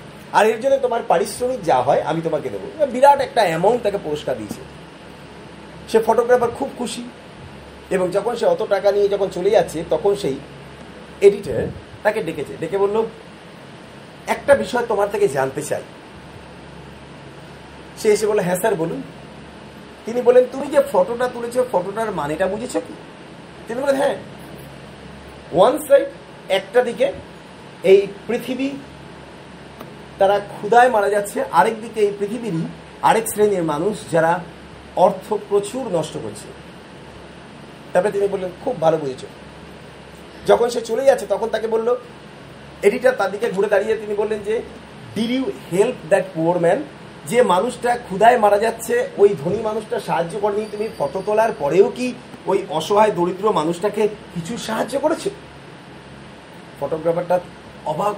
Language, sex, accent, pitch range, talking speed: Bengali, male, native, 185-240 Hz, 80 wpm